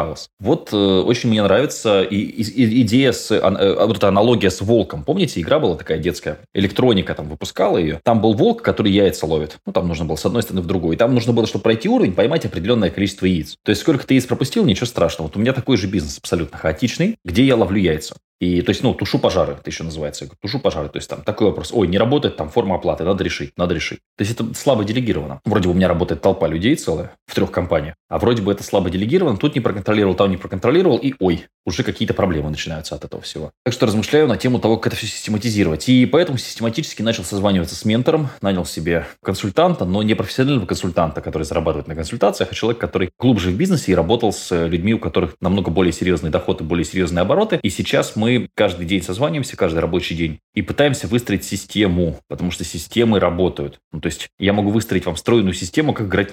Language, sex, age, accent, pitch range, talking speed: Russian, male, 20-39, native, 85-115 Hz, 220 wpm